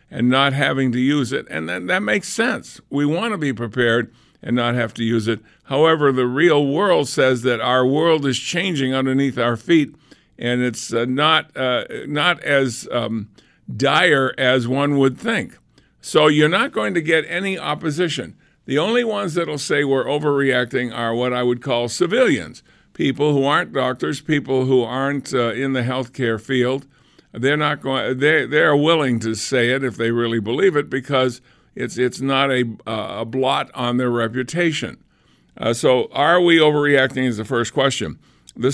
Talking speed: 180 wpm